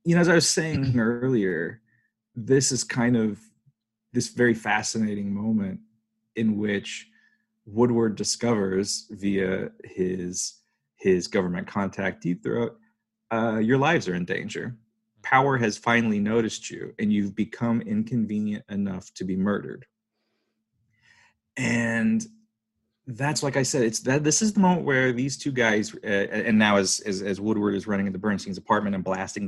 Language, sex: English, male